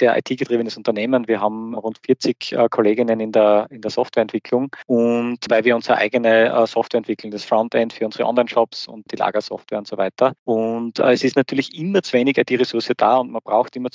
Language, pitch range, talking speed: German, 115-135 Hz, 205 wpm